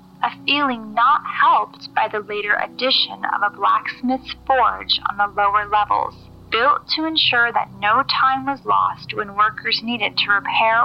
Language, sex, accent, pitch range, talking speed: English, female, American, 205-260 Hz, 160 wpm